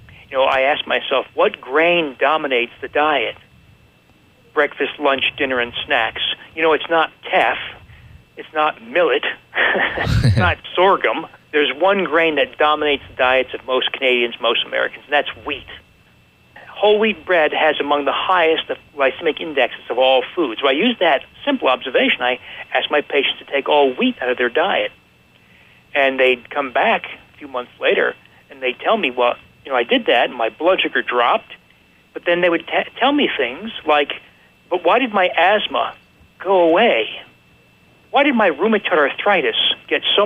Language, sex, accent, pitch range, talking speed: English, male, American, 130-200 Hz, 175 wpm